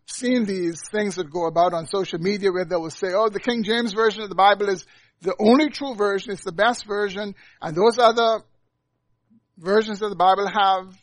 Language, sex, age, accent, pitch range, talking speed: English, male, 60-79, American, 160-210 Hz, 205 wpm